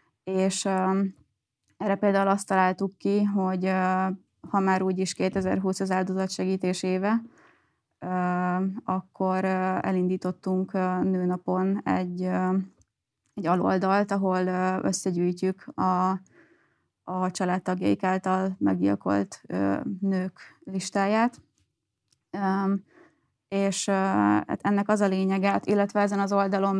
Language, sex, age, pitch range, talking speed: Hungarian, female, 20-39, 180-195 Hz, 115 wpm